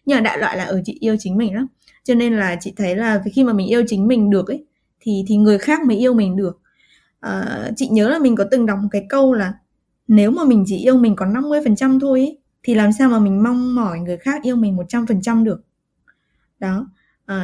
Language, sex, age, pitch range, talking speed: Vietnamese, female, 20-39, 200-260 Hz, 250 wpm